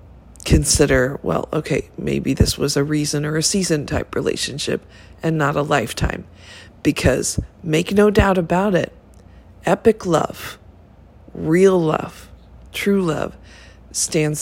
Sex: female